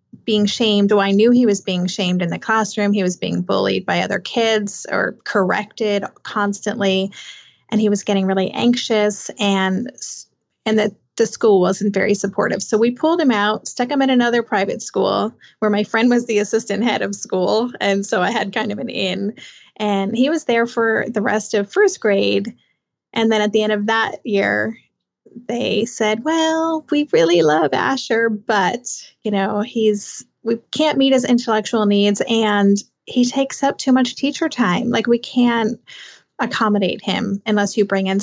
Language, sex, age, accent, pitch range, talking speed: English, female, 20-39, American, 200-235 Hz, 180 wpm